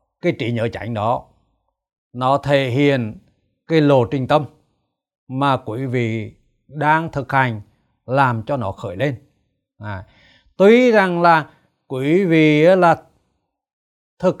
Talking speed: 130 wpm